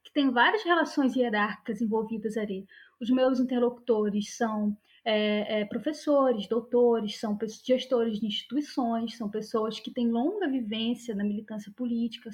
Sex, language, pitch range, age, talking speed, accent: female, Portuguese, 215-275 Hz, 20-39, 125 wpm, Brazilian